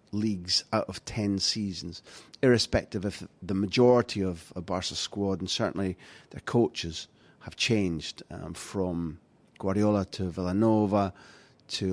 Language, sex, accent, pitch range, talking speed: English, male, British, 95-115 Hz, 125 wpm